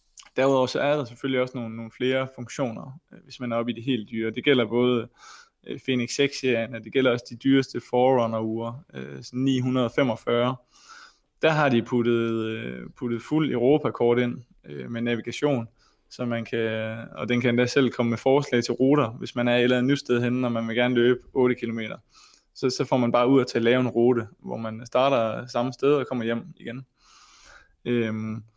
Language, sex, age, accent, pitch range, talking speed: Danish, male, 20-39, native, 115-130 Hz, 190 wpm